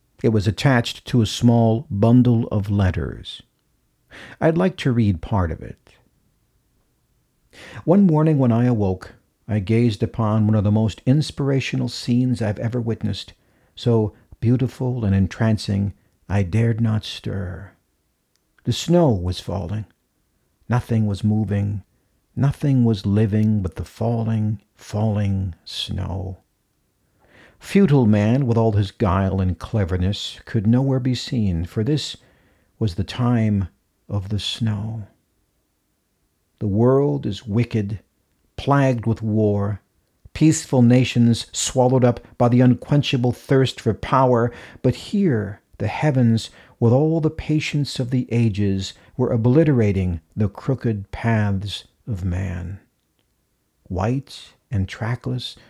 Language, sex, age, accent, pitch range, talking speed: English, male, 50-69, American, 100-125 Hz, 125 wpm